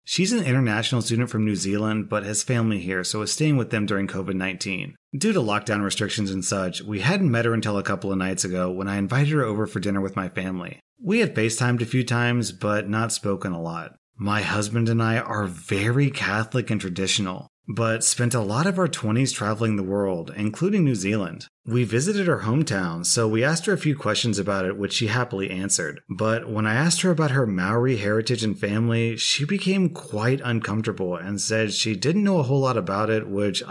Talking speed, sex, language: 215 wpm, male, English